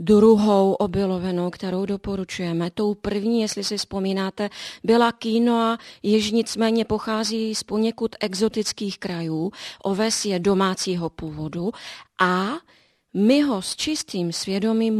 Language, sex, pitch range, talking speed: Czech, female, 195-230 Hz, 115 wpm